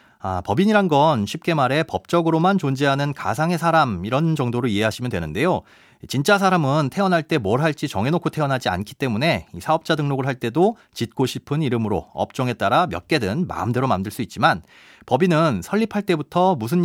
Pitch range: 125-175 Hz